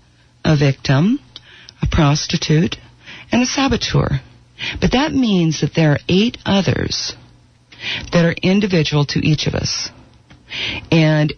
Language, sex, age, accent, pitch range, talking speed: English, female, 50-69, American, 135-175 Hz, 120 wpm